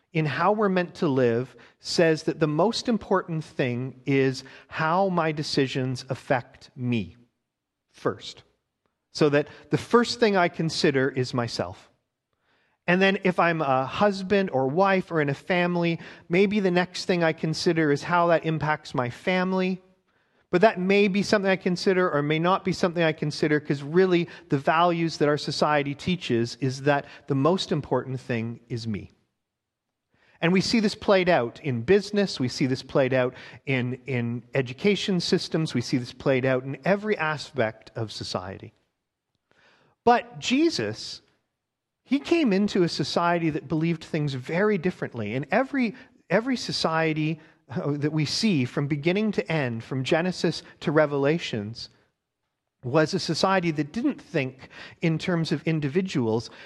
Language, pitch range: English, 135-185 Hz